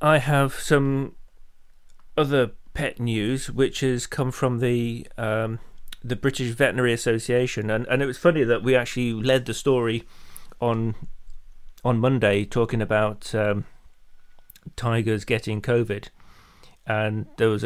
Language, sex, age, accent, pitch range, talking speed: English, male, 40-59, British, 110-130 Hz, 135 wpm